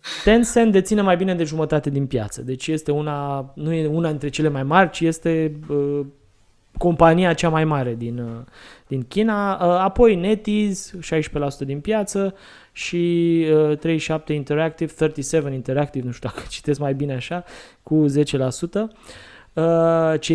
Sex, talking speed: male, 155 wpm